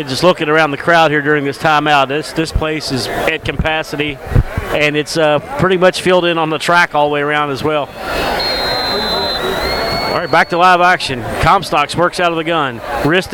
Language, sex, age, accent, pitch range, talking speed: English, male, 40-59, American, 150-185 Hz, 200 wpm